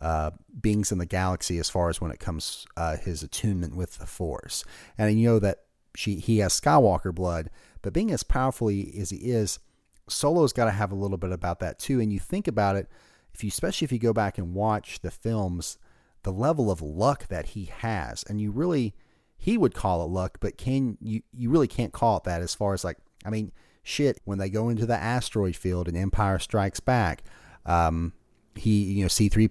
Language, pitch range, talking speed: English, 95-115 Hz, 220 wpm